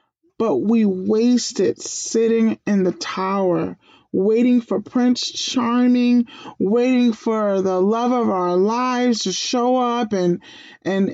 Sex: male